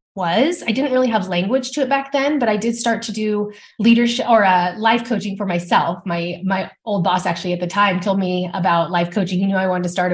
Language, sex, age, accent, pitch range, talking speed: English, female, 20-39, American, 190-250 Hz, 250 wpm